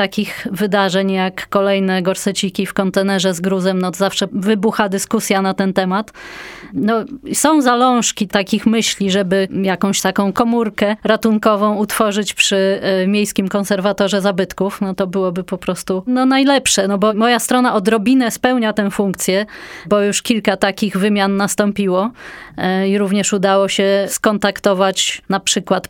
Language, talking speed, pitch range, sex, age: Polish, 140 wpm, 195-220 Hz, female, 20-39